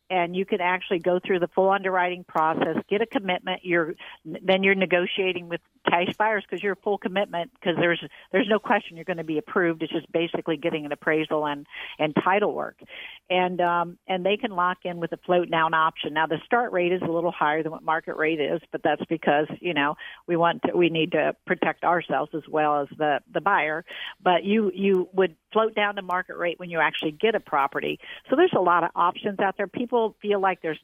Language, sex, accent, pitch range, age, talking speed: English, female, American, 165-200 Hz, 50-69, 225 wpm